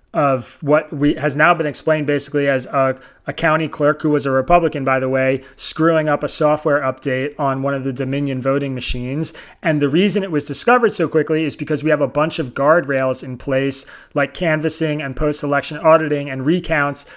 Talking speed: 200 wpm